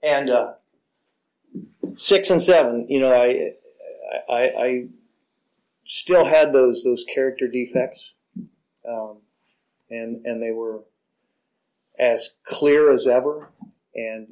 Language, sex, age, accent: English, male, 40-59, American